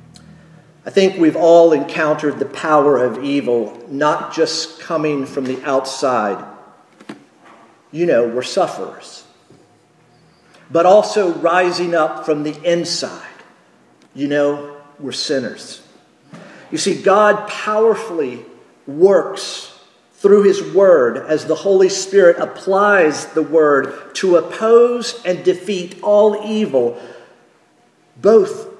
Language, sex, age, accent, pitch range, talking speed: English, male, 50-69, American, 140-195 Hz, 110 wpm